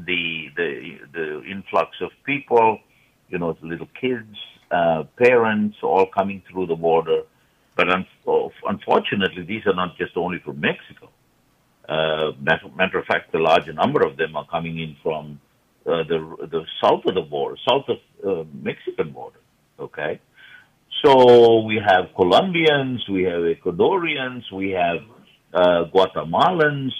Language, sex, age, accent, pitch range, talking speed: English, male, 60-79, Indian, 90-130 Hz, 145 wpm